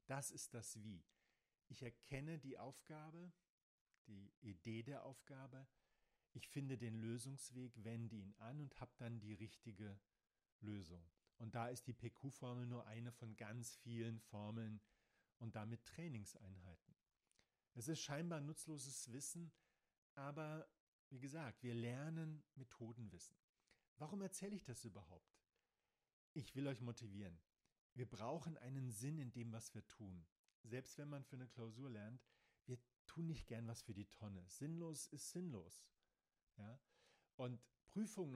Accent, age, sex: German, 40-59, male